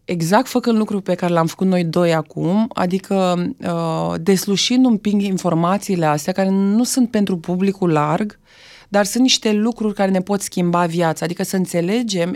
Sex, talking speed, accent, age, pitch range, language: female, 165 wpm, native, 30-49, 165-210 Hz, Romanian